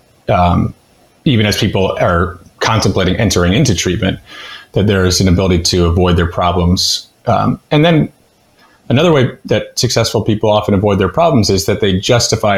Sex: male